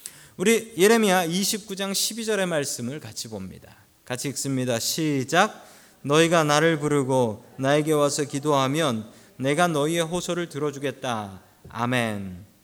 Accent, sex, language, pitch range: native, male, Korean, 125-195 Hz